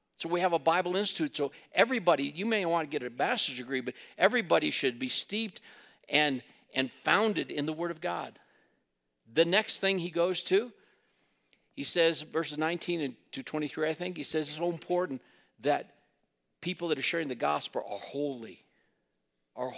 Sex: male